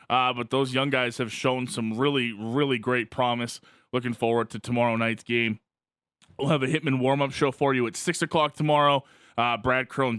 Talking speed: 200 wpm